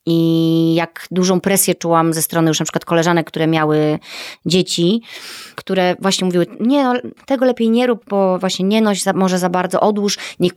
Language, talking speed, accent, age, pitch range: Polish, 175 wpm, native, 30-49, 175-225 Hz